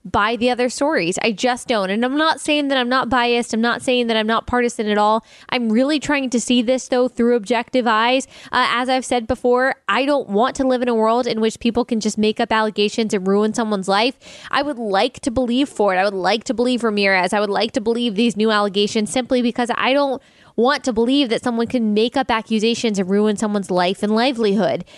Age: 10-29